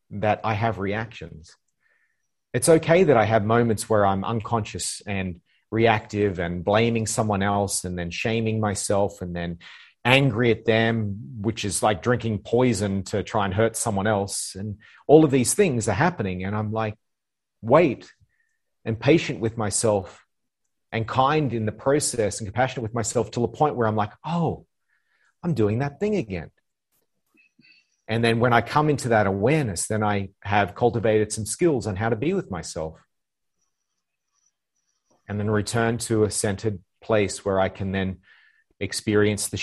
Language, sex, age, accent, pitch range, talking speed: English, male, 40-59, Australian, 100-115 Hz, 165 wpm